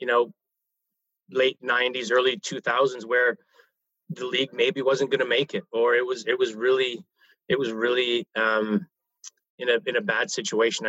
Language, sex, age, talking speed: English, male, 30-49, 175 wpm